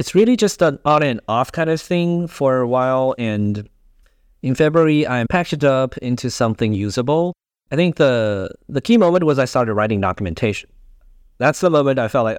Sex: male